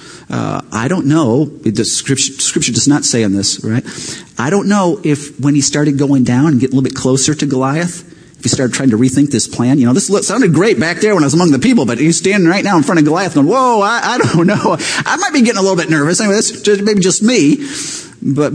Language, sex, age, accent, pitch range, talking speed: English, male, 40-59, American, 135-205 Hz, 265 wpm